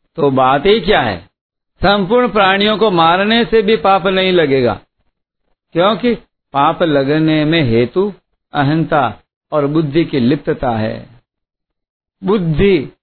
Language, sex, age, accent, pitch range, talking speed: Hindi, male, 60-79, native, 145-205 Hz, 120 wpm